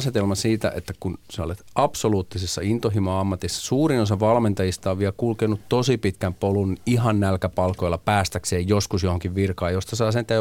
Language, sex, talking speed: Finnish, male, 150 wpm